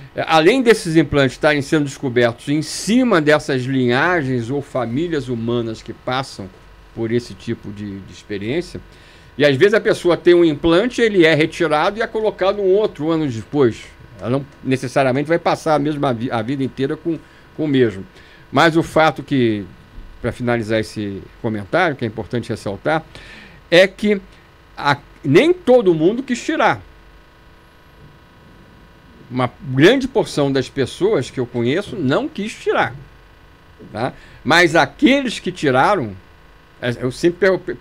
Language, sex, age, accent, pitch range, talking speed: Portuguese, male, 60-79, Brazilian, 110-165 Hz, 145 wpm